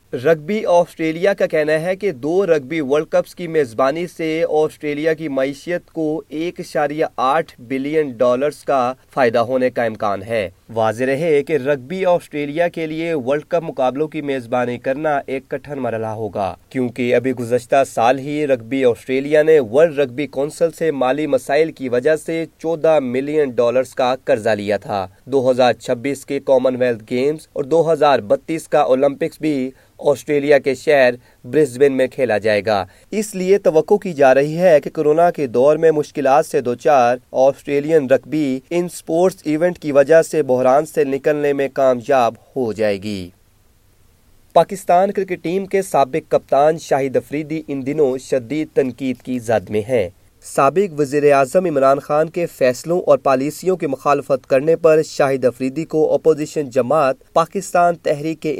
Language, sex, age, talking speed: Urdu, male, 30-49, 155 wpm